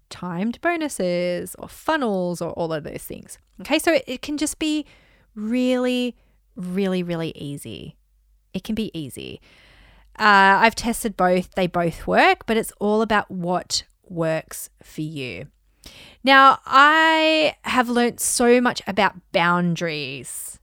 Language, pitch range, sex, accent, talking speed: English, 180-255 Hz, female, Australian, 135 wpm